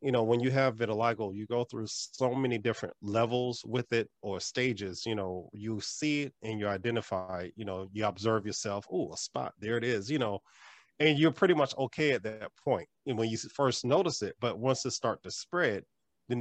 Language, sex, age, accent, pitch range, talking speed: English, male, 30-49, American, 105-130 Hz, 210 wpm